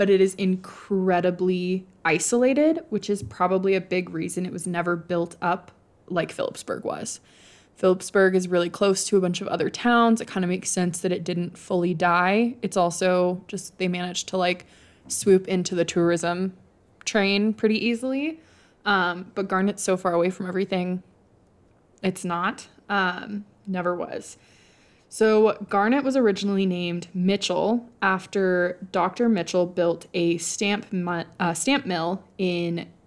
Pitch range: 175-210 Hz